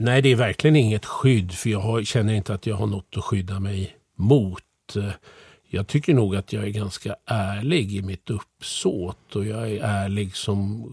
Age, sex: 50-69, male